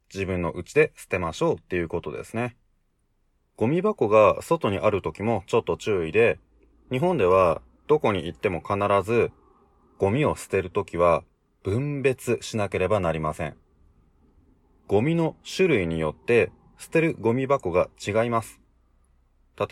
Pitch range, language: 85-135 Hz, Japanese